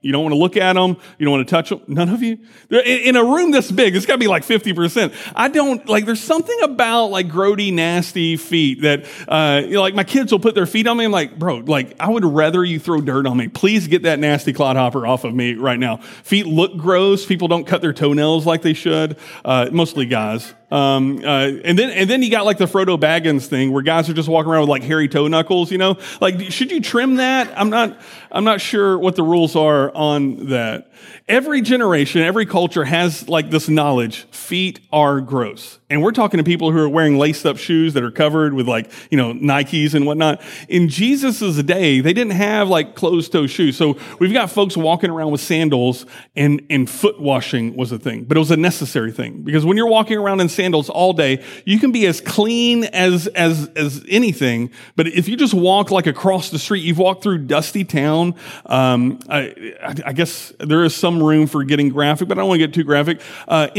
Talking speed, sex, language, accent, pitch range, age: 230 wpm, male, English, American, 145-200 Hz, 30-49